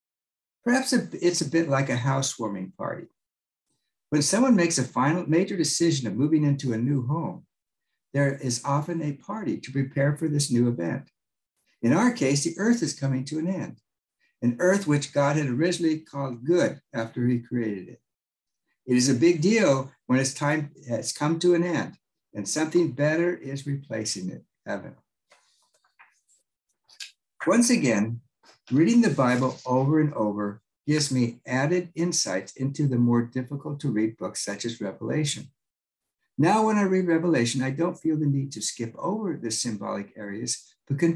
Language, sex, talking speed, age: English, male, 165 wpm, 60-79